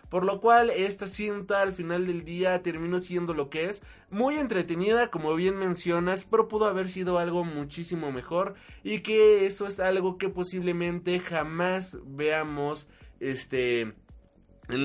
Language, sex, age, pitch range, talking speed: Spanish, male, 20-39, 150-185 Hz, 150 wpm